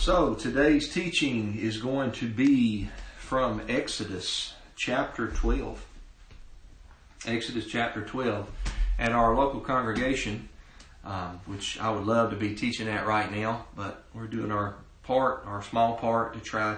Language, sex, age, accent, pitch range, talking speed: English, male, 40-59, American, 90-110 Hz, 140 wpm